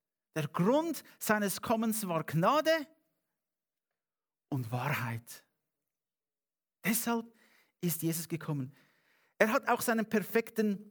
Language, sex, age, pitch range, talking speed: English, male, 50-69, 145-195 Hz, 95 wpm